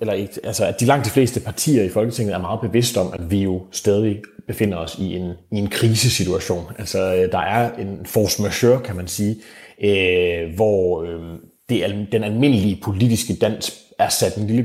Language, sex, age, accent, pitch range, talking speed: Danish, male, 30-49, native, 90-115 Hz, 190 wpm